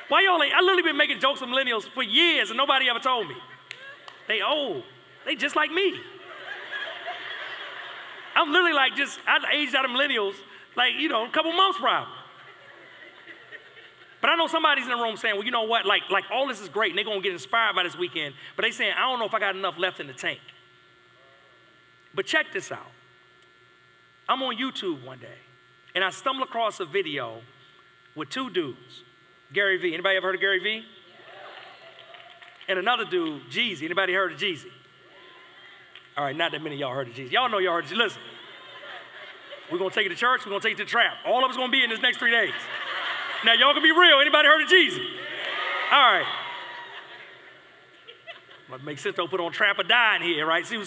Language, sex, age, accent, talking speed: English, male, 40-59, American, 215 wpm